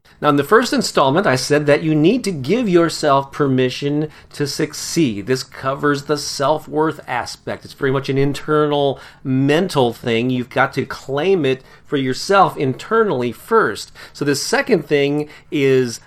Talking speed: 155 wpm